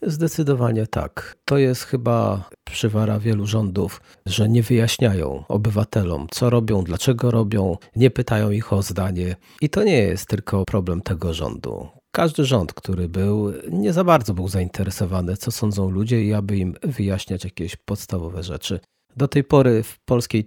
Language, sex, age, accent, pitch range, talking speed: Polish, male, 40-59, native, 100-130 Hz, 155 wpm